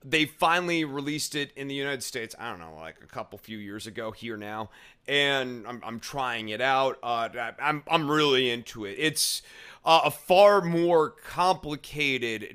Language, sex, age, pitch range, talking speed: English, male, 30-49, 120-150 Hz, 175 wpm